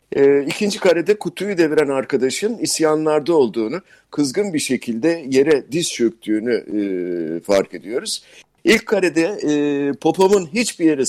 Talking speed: 125 wpm